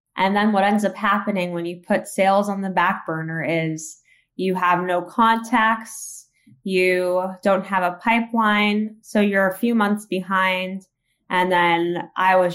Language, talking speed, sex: English, 165 wpm, female